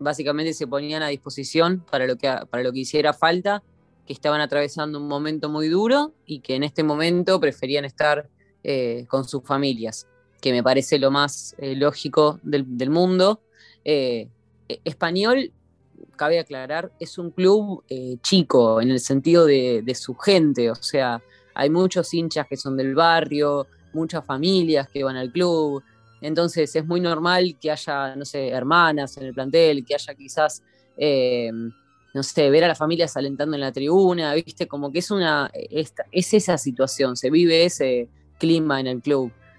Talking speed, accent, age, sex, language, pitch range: 170 wpm, Argentinian, 20-39, female, Portuguese, 135-165 Hz